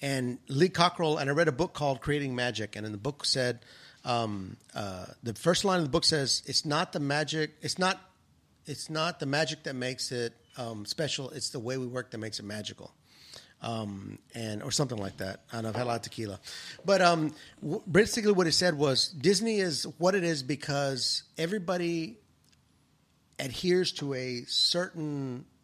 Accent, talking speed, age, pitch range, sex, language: American, 185 wpm, 40-59, 125-175 Hz, male, English